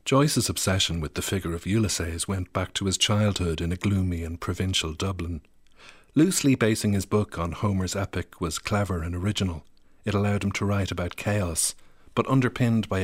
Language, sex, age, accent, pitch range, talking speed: English, male, 50-69, Irish, 90-105 Hz, 180 wpm